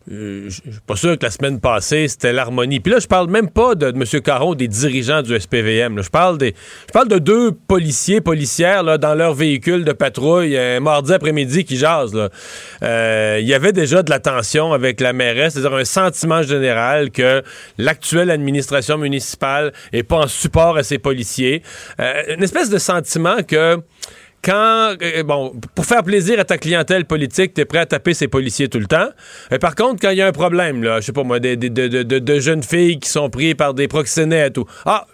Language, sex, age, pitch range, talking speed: French, male, 40-59, 130-175 Hz, 215 wpm